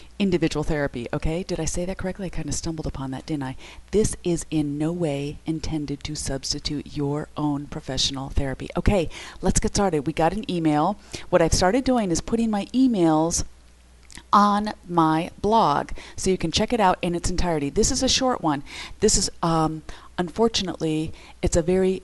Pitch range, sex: 155-195 Hz, female